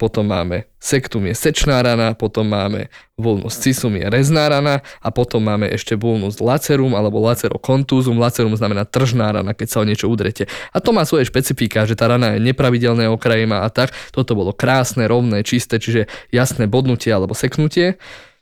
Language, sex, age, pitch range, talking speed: Slovak, male, 20-39, 110-130 Hz, 175 wpm